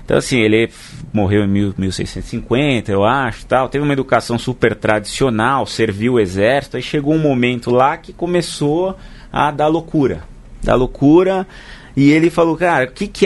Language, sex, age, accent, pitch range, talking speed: Portuguese, male, 30-49, Brazilian, 110-150 Hz, 165 wpm